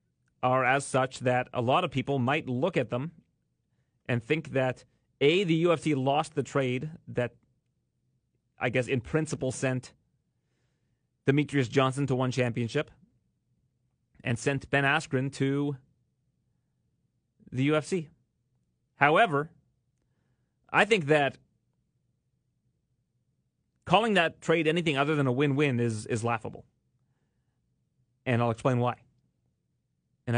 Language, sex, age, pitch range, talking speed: English, male, 30-49, 120-145 Hz, 115 wpm